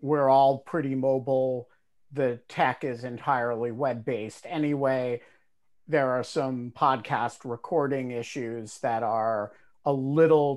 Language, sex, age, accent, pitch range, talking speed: English, male, 50-69, American, 130-150 Hz, 115 wpm